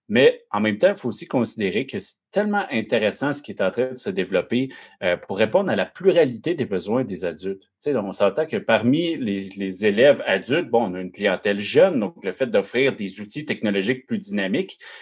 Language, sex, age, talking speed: French, male, 30-49, 215 wpm